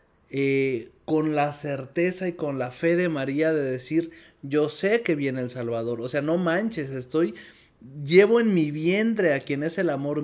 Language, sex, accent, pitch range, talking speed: Spanish, male, Mexican, 120-160 Hz, 190 wpm